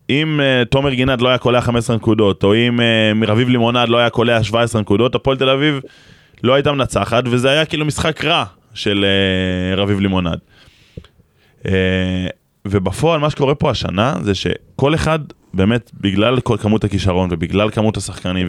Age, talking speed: 20-39, 165 wpm